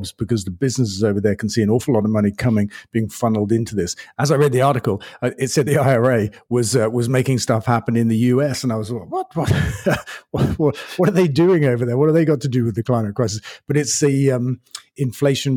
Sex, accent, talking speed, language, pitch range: male, British, 240 wpm, English, 115-135 Hz